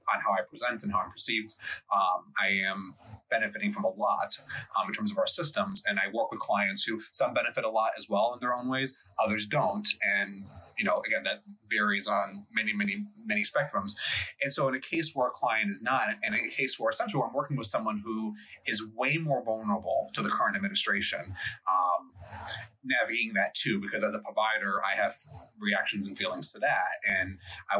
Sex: male